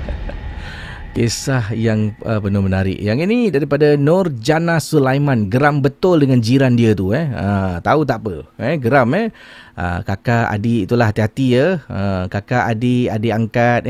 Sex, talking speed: male, 150 wpm